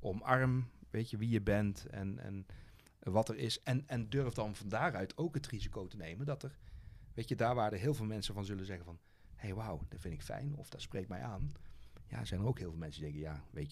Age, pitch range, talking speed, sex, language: 40-59, 95-125 Hz, 255 wpm, male, Dutch